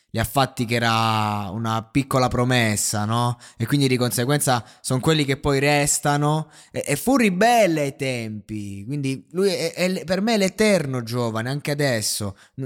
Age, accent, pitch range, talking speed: 20-39, native, 105-130 Hz, 160 wpm